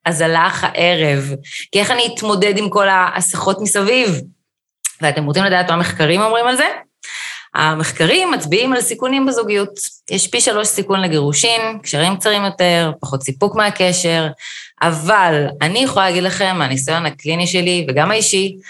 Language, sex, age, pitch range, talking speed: Hebrew, female, 20-39, 160-225 Hz, 150 wpm